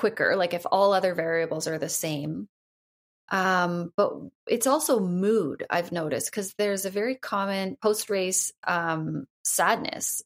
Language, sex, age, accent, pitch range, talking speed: English, female, 30-49, American, 155-185 Hz, 140 wpm